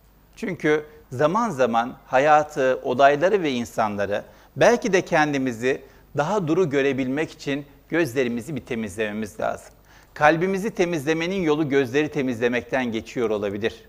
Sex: male